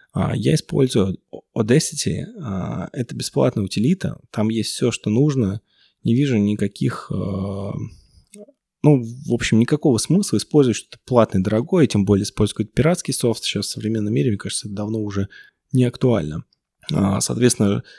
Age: 20-39